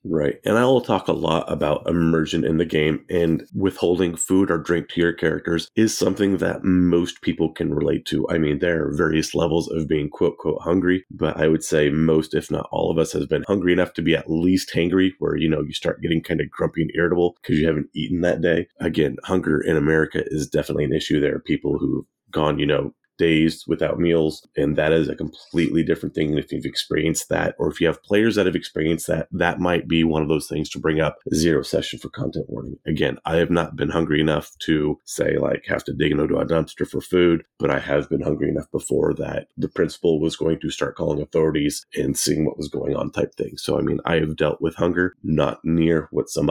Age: 30-49